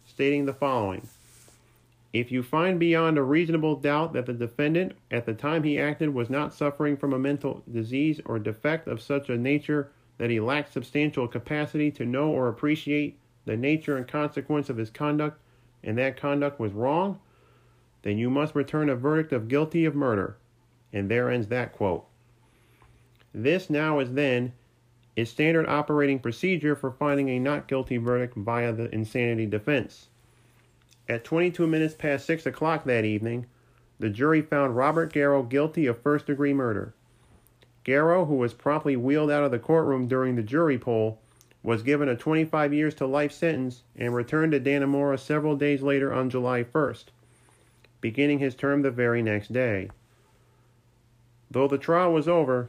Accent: American